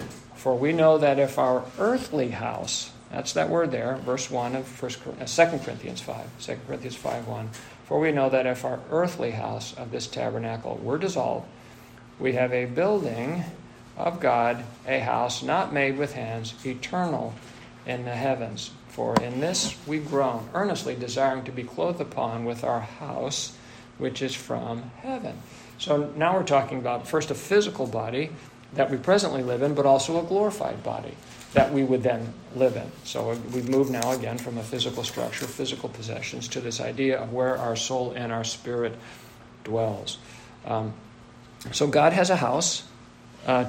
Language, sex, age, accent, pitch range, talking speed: English, male, 50-69, American, 120-145 Hz, 170 wpm